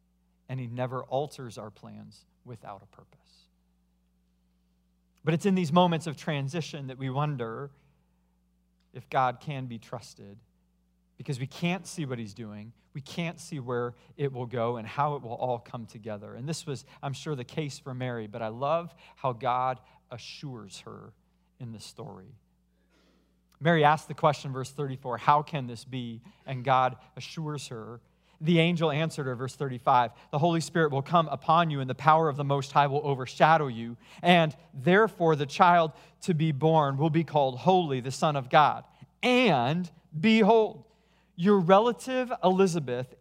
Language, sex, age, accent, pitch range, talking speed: English, male, 40-59, American, 125-170 Hz, 170 wpm